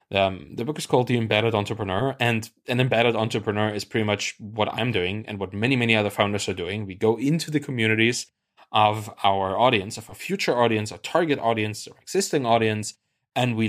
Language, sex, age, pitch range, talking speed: English, male, 20-39, 105-125 Hz, 200 wpm